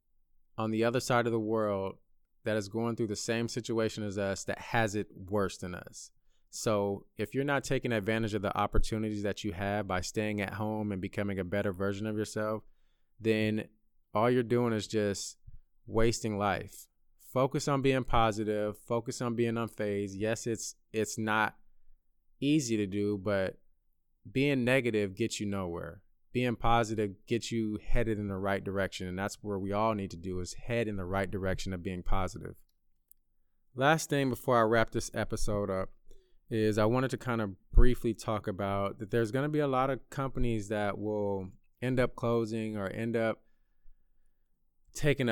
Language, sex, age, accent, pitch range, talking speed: English, male, 20-39, American, 100-115 Hz, 175 wpm